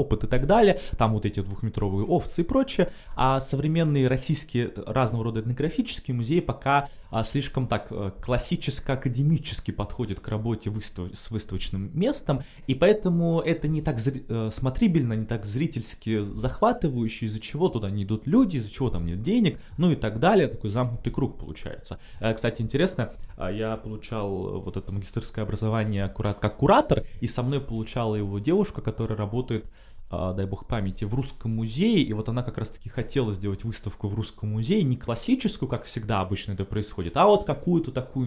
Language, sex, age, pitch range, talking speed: Russian, male, 20-39, 105-140 Hz, 165 wpm